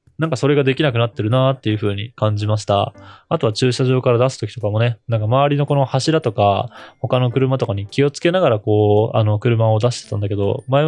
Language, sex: Japanese, male